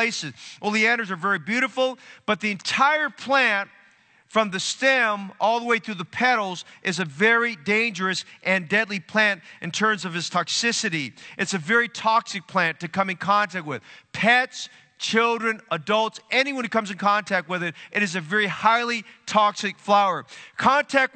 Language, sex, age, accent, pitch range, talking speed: English, male, 40-59, American, 190-230 Hz, 165 wpm